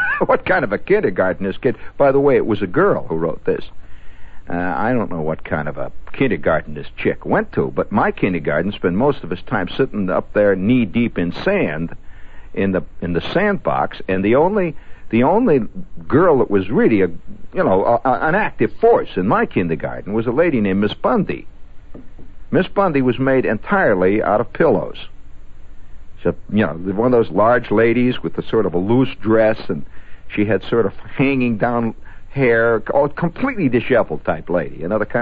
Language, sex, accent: English, male, American